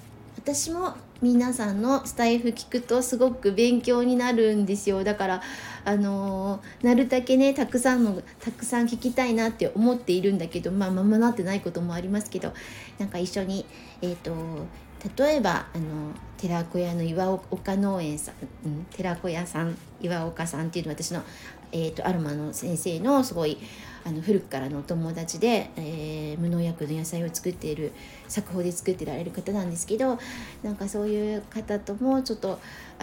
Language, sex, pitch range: Japanese, female, 170-230 Hz